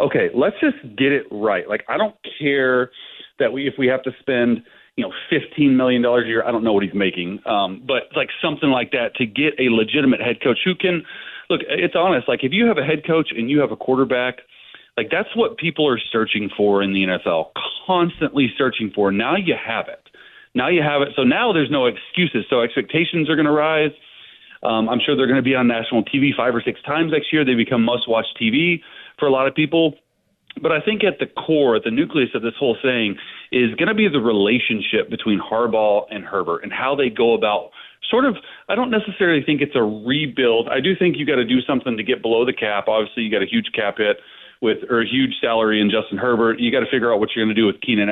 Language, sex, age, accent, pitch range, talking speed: English, male, 30-49, American, 115-155 Hz, 240 wpm